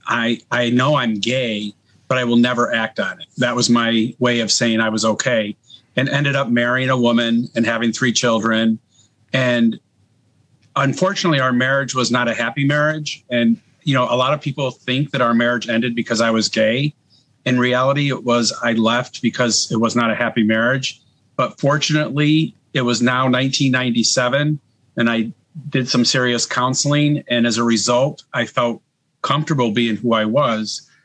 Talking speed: 180 wpm